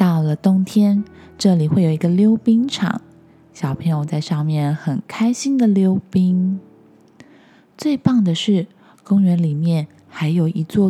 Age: 20-39